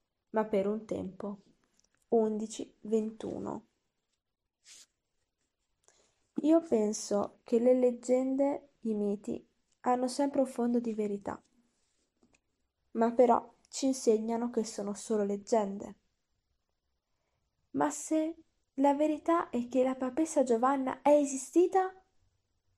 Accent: native